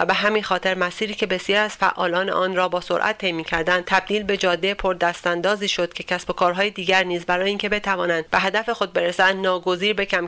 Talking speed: 215 wpm